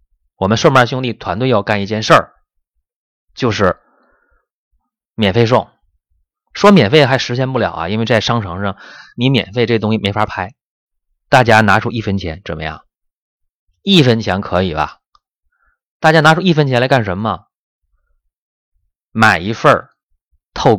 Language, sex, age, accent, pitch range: Chinese, male, 20-39, native, 85-125 Hz